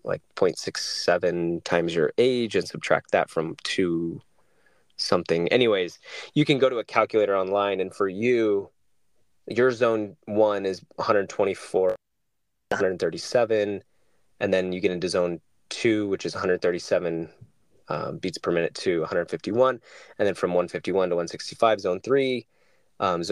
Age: 20-39